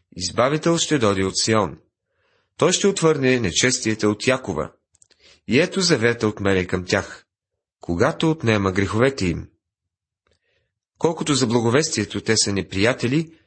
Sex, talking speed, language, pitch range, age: male, 125 wpm, Bulgarian, 95-130 Hz, 30-49